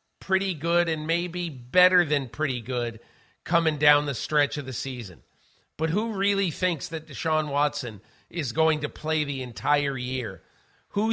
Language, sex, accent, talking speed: English, male, American, 160 wpm